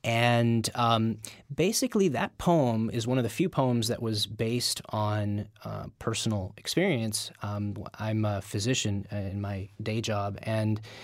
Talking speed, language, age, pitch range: 145 wpm, English, 20-39, 105-120 Hz